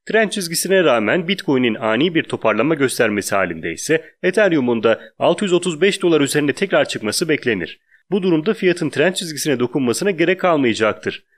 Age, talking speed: 30-49, 135 wpm